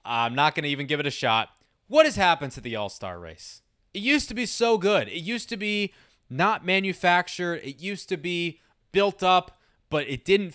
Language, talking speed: English, 210 wpm